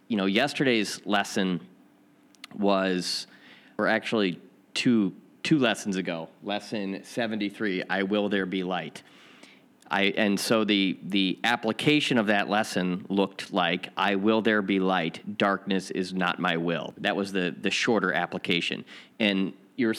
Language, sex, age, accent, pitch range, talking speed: English, male, 30-49, American, 95-115 Hz, 140 wpm